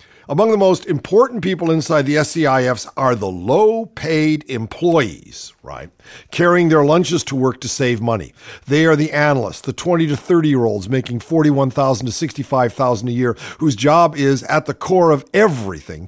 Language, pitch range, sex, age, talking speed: English, 120-165 Hz, male, 50-69, 160 wpm